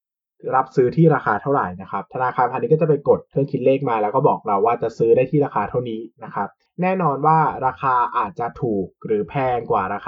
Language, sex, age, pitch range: Thai, male, 20-39, 115-160 Hz